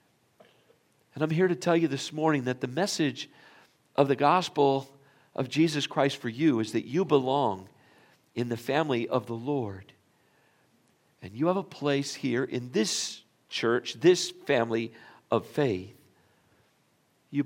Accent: American